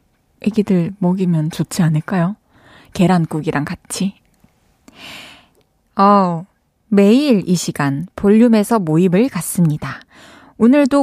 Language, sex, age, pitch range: Korean, female, 20-39, 165-245 Hz